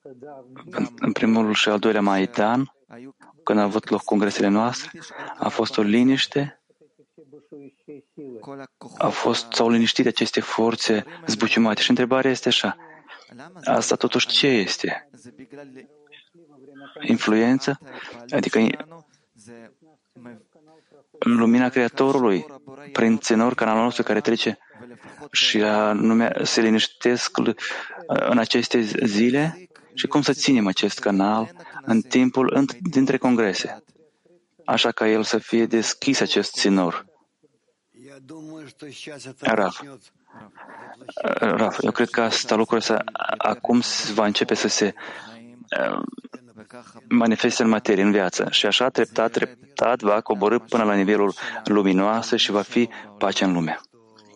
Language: English